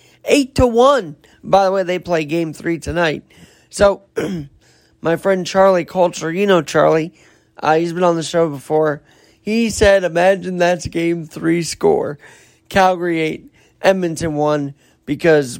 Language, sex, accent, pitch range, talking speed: English, male, American, 155-195 Hz, 145 wpm